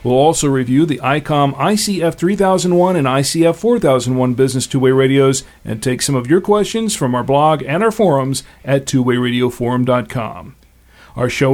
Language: English